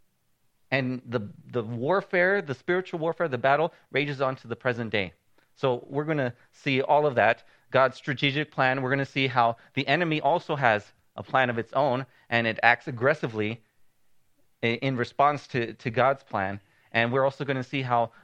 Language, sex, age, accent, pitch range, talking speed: English, male, 30-49, American, 115-145 Hz, 190 wpm